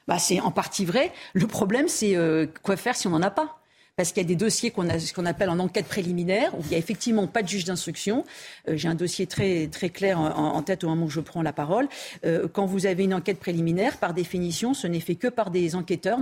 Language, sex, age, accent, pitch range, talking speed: French, female, 50-69, French, 175-225 Hz, 250 wpm